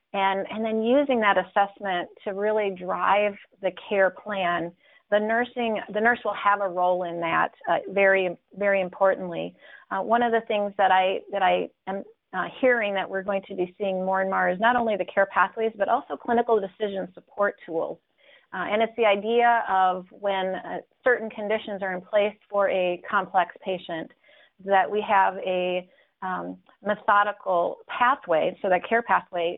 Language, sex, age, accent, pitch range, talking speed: English, female, 40-59, American, 185-215 Hz, 175 wpm